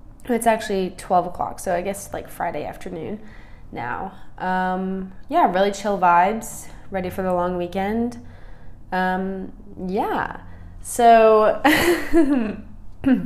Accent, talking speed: American, 110 wpm